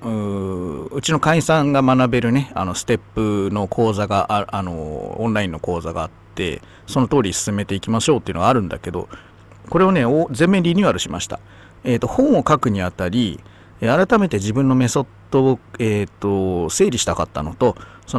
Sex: male